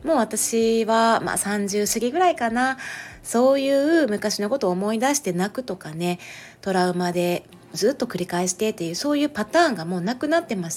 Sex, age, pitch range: female, 30-49, 180-280 Hz